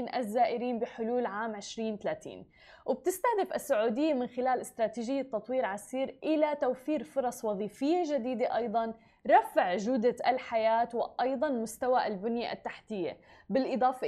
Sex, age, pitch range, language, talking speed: female, 20-39, 230-290 Hz, Arabic, 105 wpm